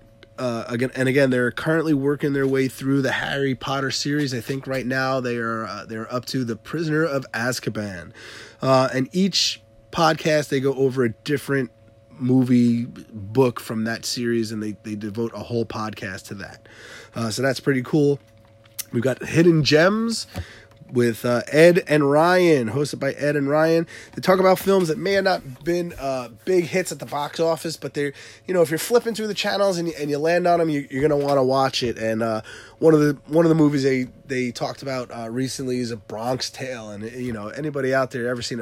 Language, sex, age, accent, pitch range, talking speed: English, male, 20-39, American, 115-150 Hz, 215 wpm